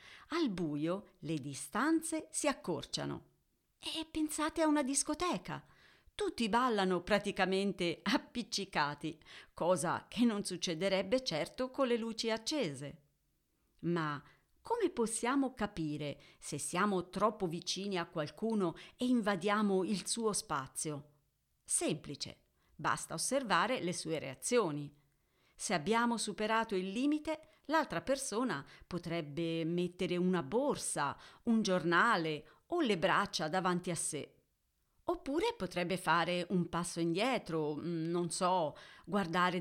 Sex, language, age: female, Italian, 40-59